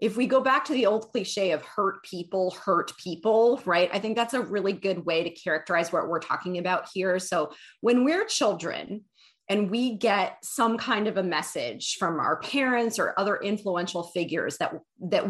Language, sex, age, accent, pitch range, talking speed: English, female, 30-49, American, 175-230 Hz, 190 wpm